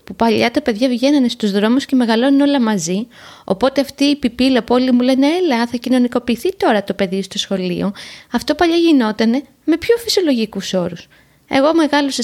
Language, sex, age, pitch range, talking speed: Greek, female, 20-39, 205-275 Hz, 170 wpm